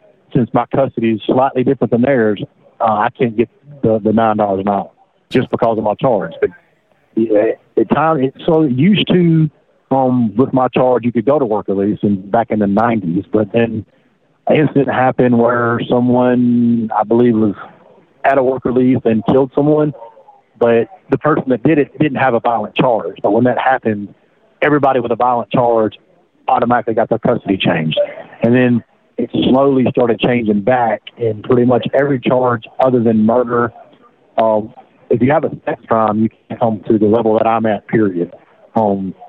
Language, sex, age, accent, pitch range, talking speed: English, male, 40-59, American, 110-130 Hz, 180 wpm